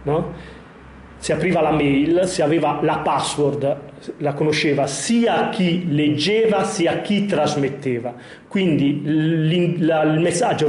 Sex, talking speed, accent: male, 125 wpm, native